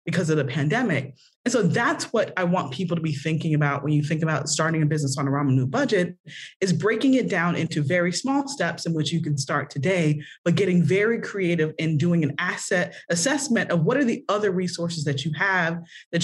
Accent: American